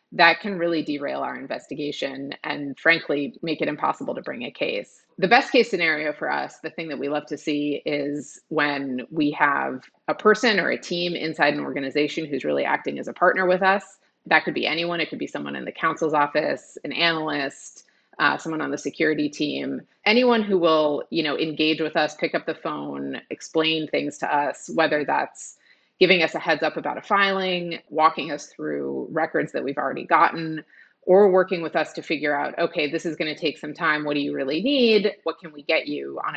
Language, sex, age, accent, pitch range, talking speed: English, female, 30-49, American, 145-170 Hz, 210 wpm